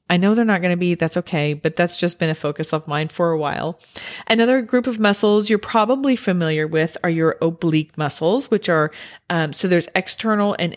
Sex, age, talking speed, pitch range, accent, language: female, 40-59, 215 wpm, 160-200 Hz, American, English